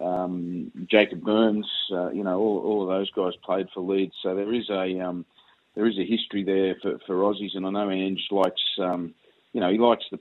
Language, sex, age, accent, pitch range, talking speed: English, male, 30-49, Australian, 90-105 Hz, 225 wpm